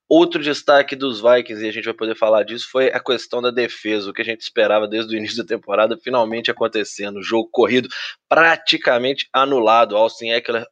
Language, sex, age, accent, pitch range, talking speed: Portuguese, male, 20-39, Brazilian, 110-145 Hz, 195 wpm